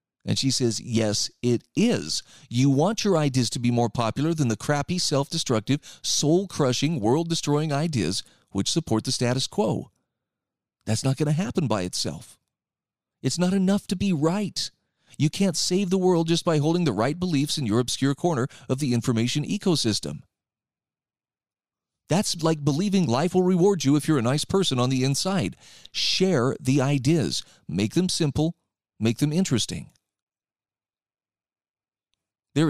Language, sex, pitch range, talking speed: English, male, 115-165 Hz, 150 wpm